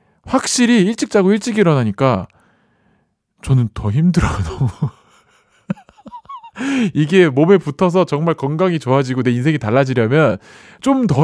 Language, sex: Korean, male